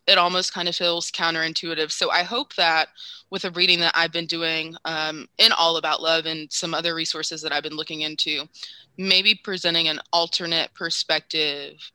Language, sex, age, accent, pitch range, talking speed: English, female, 20-39, American, 155-175 Hz, 180 wpm